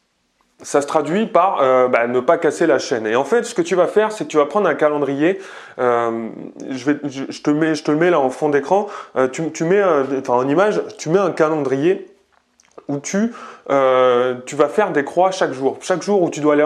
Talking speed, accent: 225 wpm, French